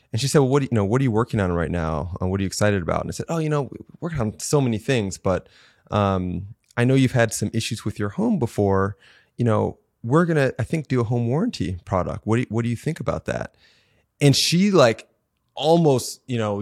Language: English